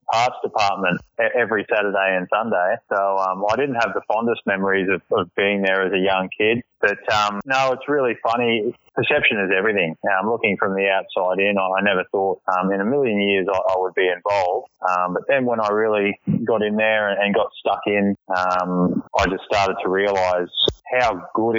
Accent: Australian